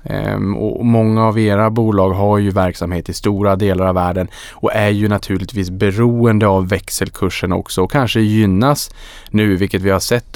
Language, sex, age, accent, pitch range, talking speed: Swedish, male, 20-39, Norwegian, 95-115 Hz, 170 wpm